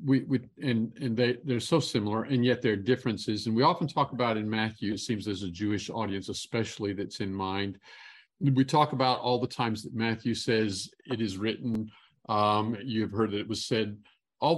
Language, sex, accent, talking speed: English, male, American, 205 wpm